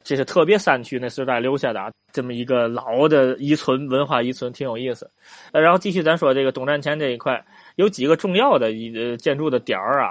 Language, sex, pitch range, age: Chinese, male, 120-150 Hz, 20-39